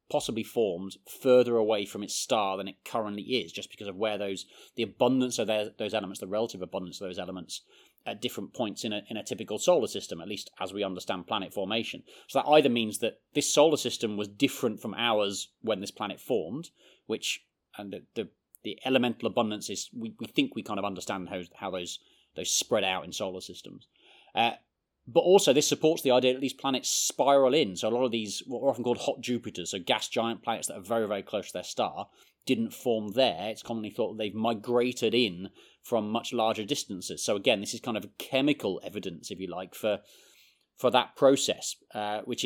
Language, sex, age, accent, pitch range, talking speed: English, male, 30-49, British, 105-130 Hz, 210 wpm